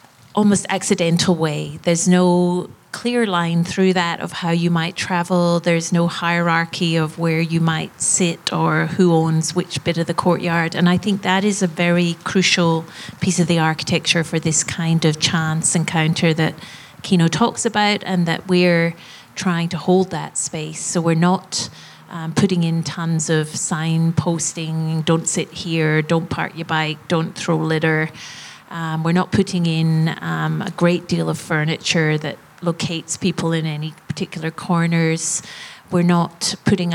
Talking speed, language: 160 wpm, English